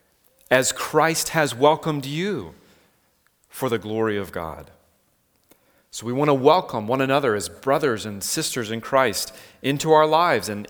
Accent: American